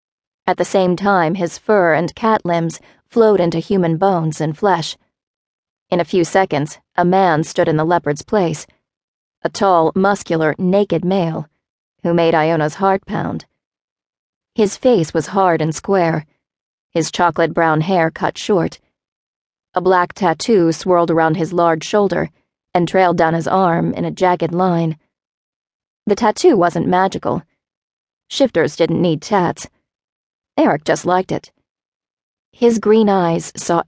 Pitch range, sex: 160-190 Hz, female